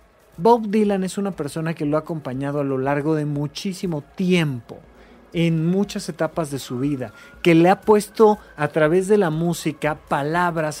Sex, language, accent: male, Spanish, Mexican